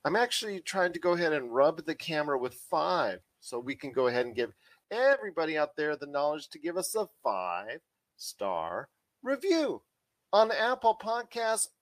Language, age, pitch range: English, 40-59, 135-195 Hz